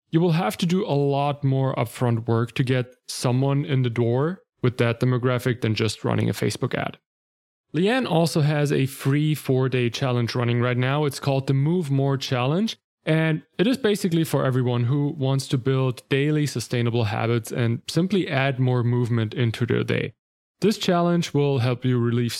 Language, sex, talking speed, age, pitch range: English, male, 185 wpm, 20-39, 120-150 Hz